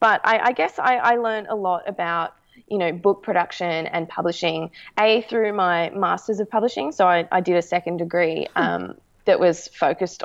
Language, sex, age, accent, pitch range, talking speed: English, female, 20-39, Australian, 175-210 Hz, 195 wpm